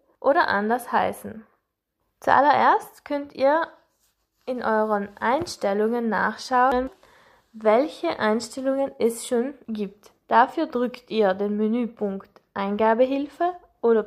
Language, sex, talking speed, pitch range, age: German, female, 95 wpm, 215-270 Hz, 20-39